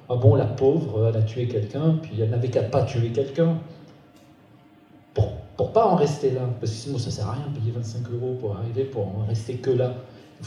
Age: 40-59